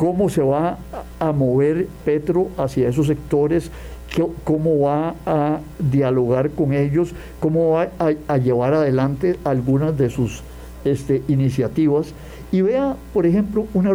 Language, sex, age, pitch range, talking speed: Spanish, male, 50-69, 140-180 Hz, 125 wpm